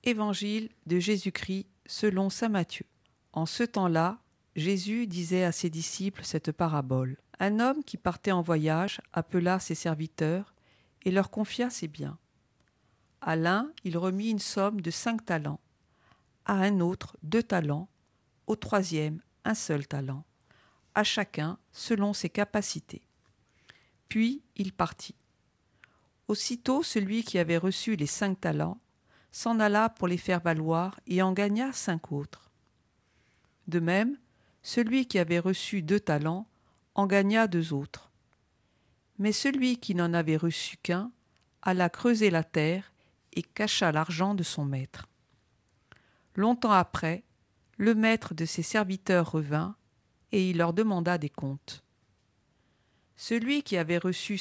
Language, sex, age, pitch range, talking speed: French, female, 50-69, 165-210 Hz, 135 wpm